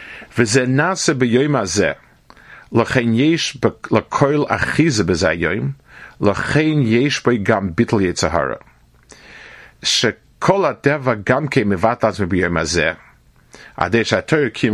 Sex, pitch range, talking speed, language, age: male, 105-140 Hz, 130 wpm, English, 50-69